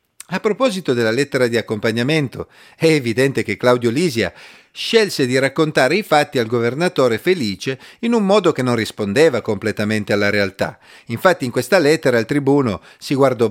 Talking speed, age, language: 160 wpm, 40-59, Italian